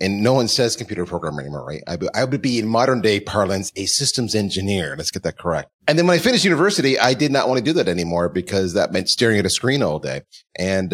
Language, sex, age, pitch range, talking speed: English, male, 30-49, 95-130 Hz, 250 wpm